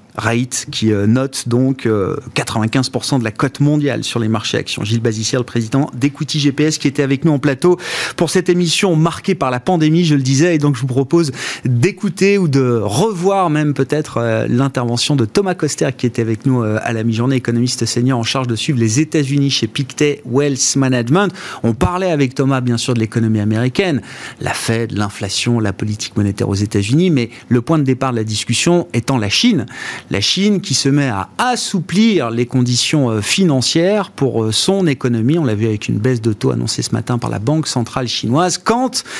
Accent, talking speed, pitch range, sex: French, 195 wpm, 115-155 Hz, male